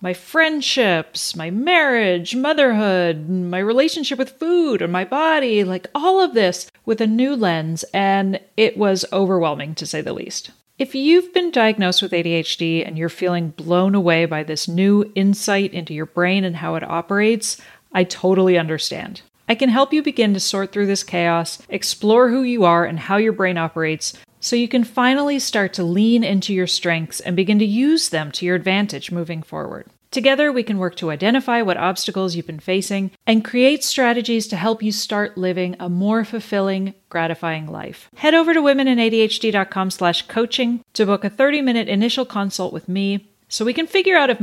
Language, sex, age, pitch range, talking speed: English, female, 40-59, 175-240 Hz, 180 wpm